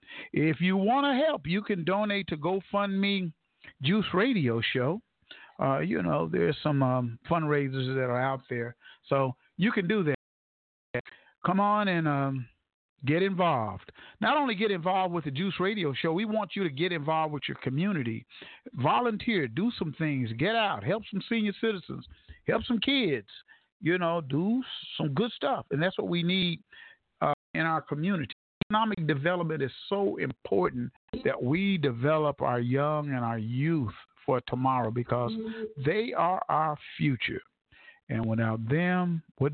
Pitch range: 135-195 Hz